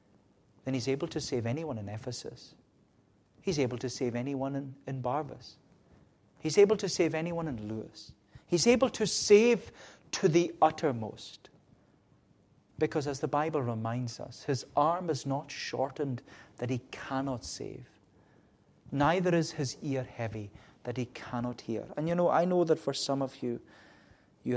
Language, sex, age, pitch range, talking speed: English, male, 40-59, 120-155 Hz, 160 wpm